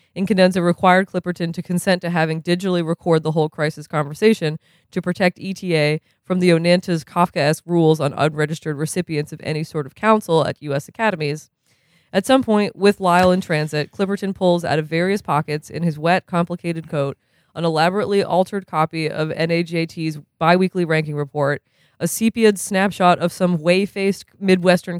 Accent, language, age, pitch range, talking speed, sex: American, English, 20-39, 155-185 Hz, 160 wpm, female